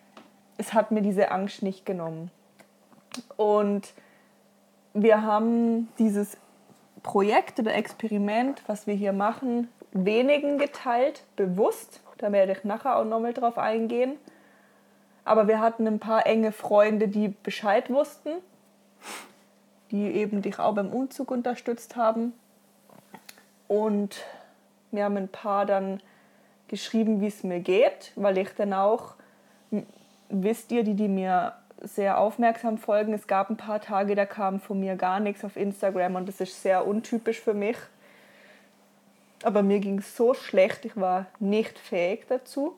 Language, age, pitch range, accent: German, 20-39, 200-235 Hz, German